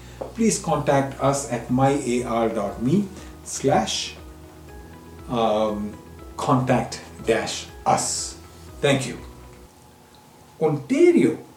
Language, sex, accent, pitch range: English, male, Indian, 120-180 Hz